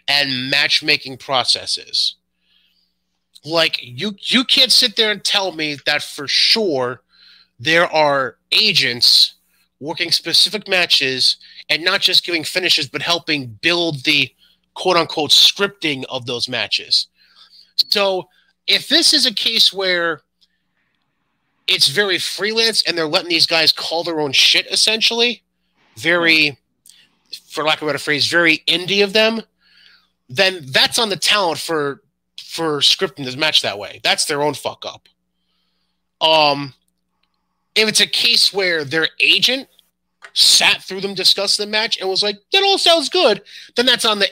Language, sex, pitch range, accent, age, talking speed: English, male, 145-200 Hz, American, 30-49, 145 wpm